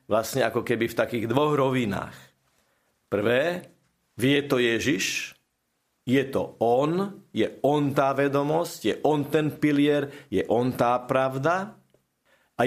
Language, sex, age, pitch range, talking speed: Slovak, male, 50-69, 120-155 Hz, 130 wpm